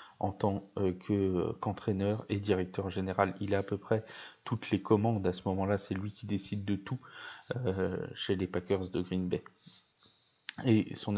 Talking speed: 175 wpm